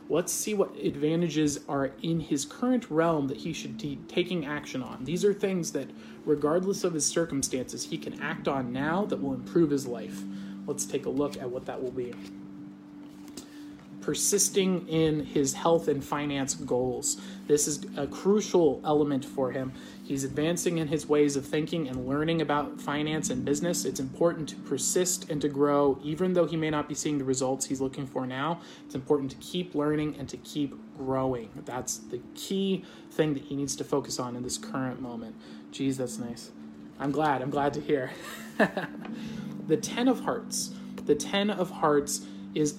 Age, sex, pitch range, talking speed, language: 30-49, male, 135-165 Hz, 185 wpm, English